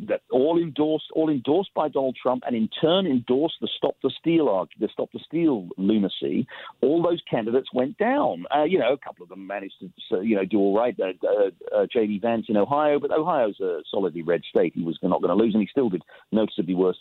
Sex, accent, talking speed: male, British, 225 wpm